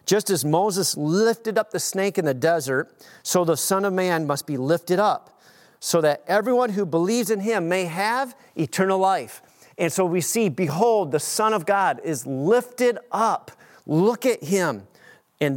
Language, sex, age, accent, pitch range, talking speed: English, male, 40-59, American, 155-195 Hz, 175 wpm